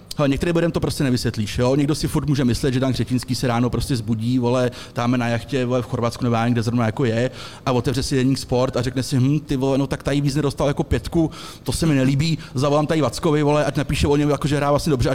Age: 30-49